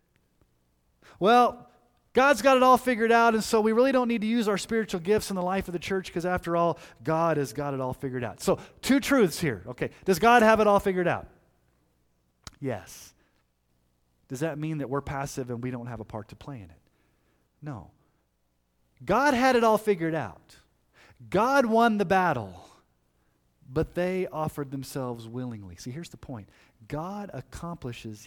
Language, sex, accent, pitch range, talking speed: English, male, American, 110-175 Hz, 180 wpm